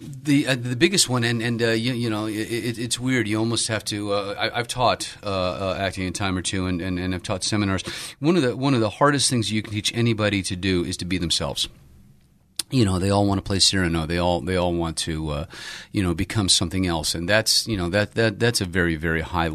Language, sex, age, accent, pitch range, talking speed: English, male, 40-59, American, 85-110 Hz, 260 wpm